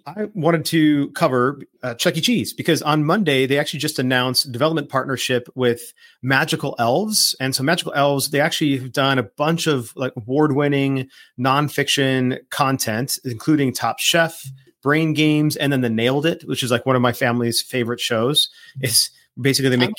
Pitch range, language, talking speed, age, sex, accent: 125-150 Hz, English, 175 wpm, 30-49, male, American